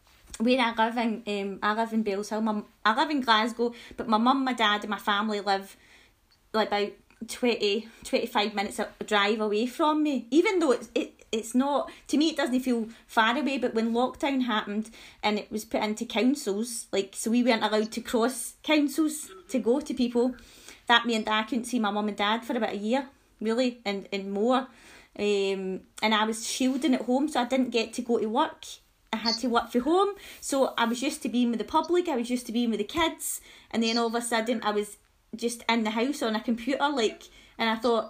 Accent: British